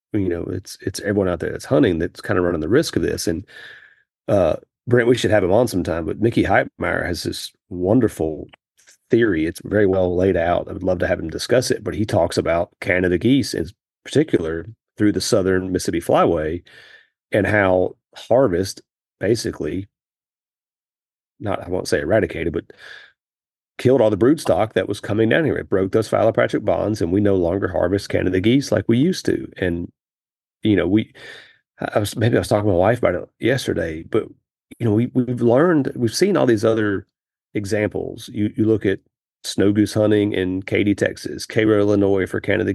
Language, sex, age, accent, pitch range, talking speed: English, male, 40-59, American, 95-115 Hz, 190 wpm